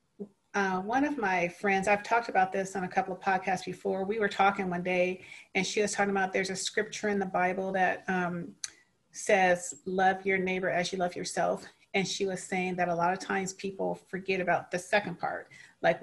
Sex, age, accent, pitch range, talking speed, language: female, 40-59, American, 185-220 Hz, 215 wpm, English